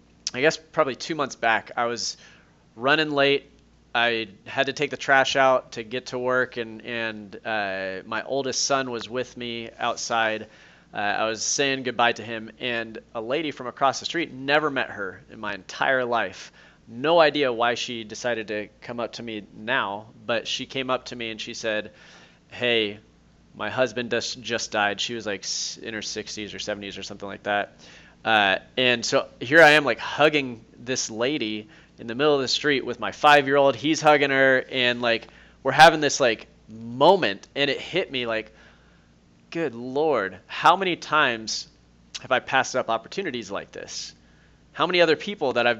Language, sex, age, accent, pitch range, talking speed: English, male, 30-49, American, 110-130 Hz, 185 wpm